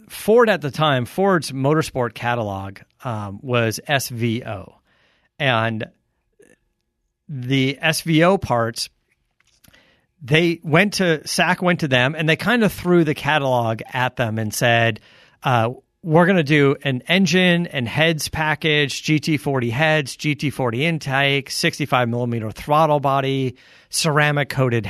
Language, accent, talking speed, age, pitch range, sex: English, American, 120 wpm, 40-59, 125-165 Hz, male